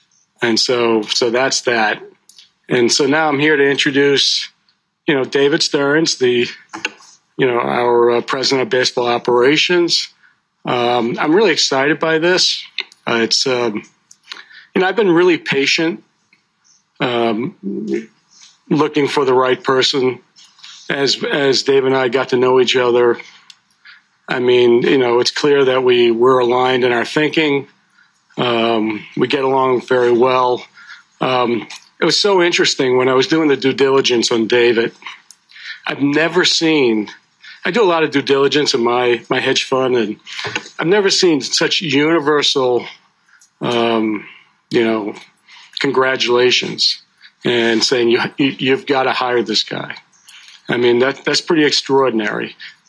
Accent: American